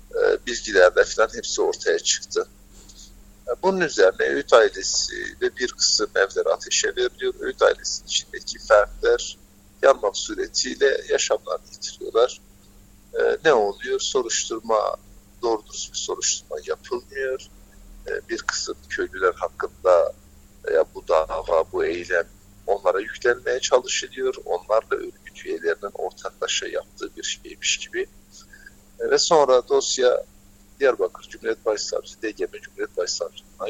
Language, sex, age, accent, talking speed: Turkish, male, 60-79, native, 110 wpm